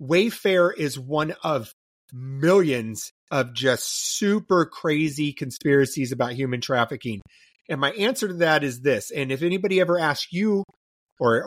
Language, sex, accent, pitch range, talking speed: English, male, American, 140-190 Hz, 140 wpm